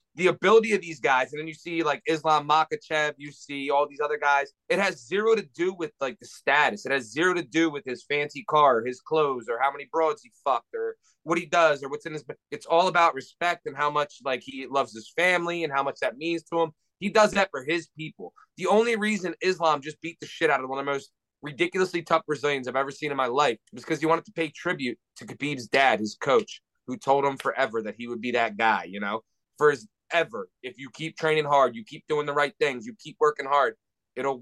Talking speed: 250 wpm